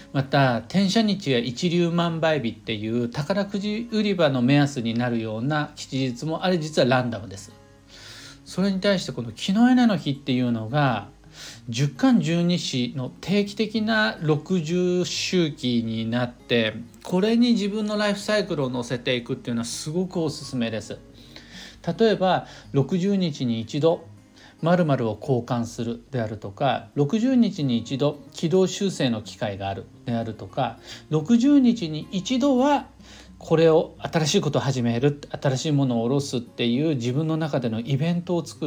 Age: 50-69